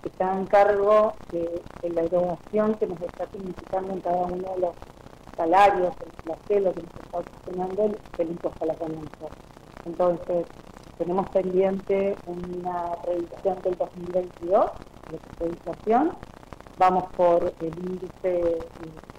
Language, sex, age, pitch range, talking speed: Spanish, female, 40-59, 170-190 Hz, 135 wpm